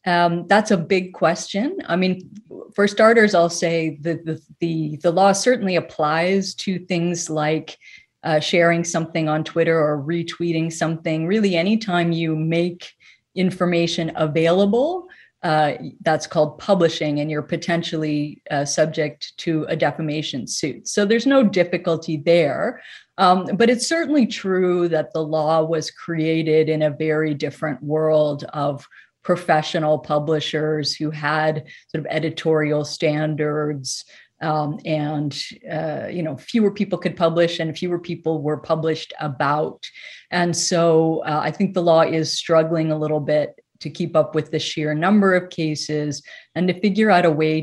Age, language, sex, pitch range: 30-49, English, female, 155-175 Hz